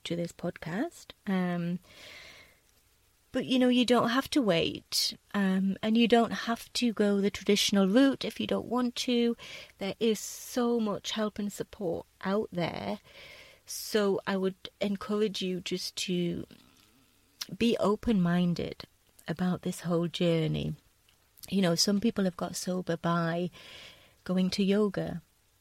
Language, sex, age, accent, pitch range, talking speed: English, female, 30-49, British, 180-230 Hz, 140 wpm